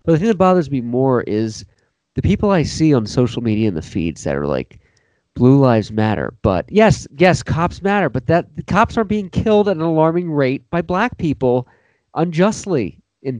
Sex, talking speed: male, 200 wpm